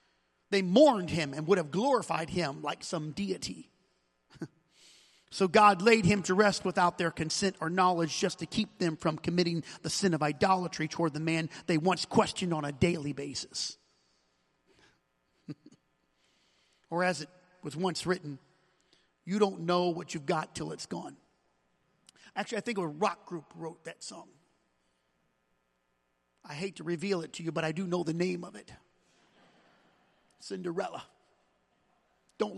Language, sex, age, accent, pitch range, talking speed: English, male, 40-59, American, 150-215 Hz, 155 wpm